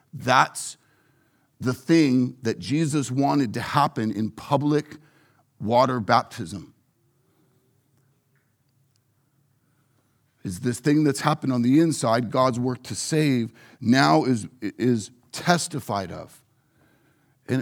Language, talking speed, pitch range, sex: English, 100 wpm, 130-190 Hz, male